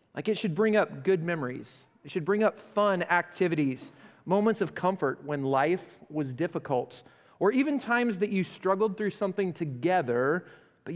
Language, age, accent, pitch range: English, 40-59, American, 145-195 Hz